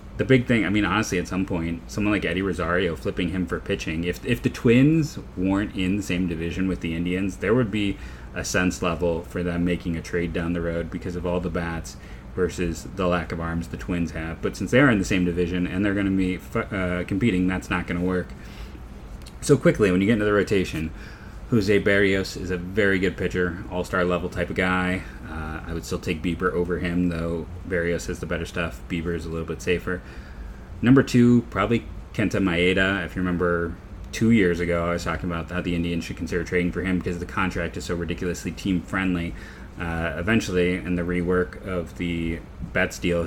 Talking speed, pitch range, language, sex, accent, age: 220 wpm, 85-95 Hz, English, male, American, 30-49